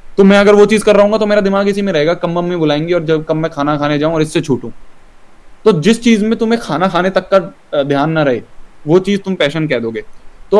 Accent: native